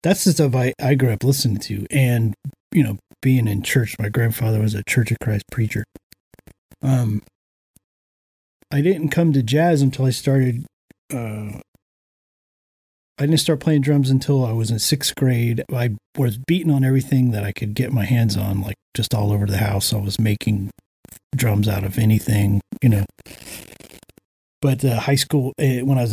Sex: male